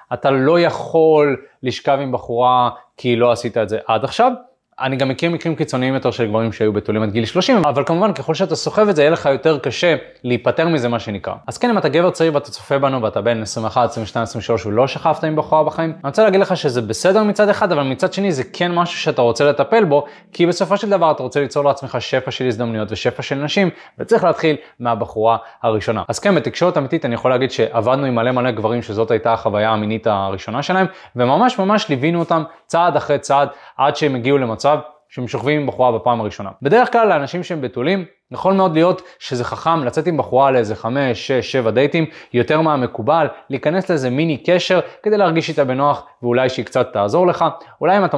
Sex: male